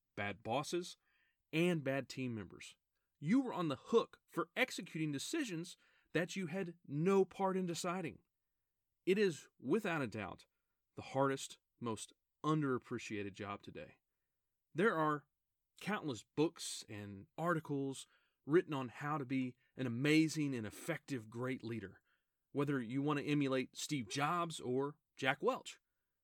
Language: English